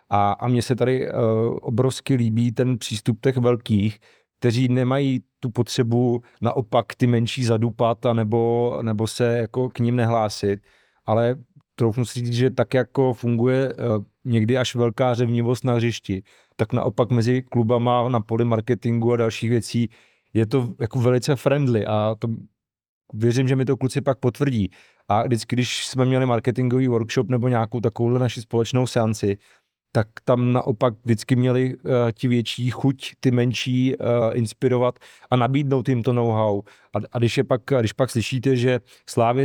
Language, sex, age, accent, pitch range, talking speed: Czech, male, 40-59, native, 115-125 Hz, 160 wpm